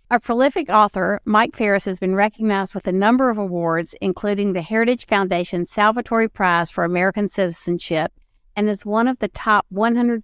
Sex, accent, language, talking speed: female, American, English, 175 wpm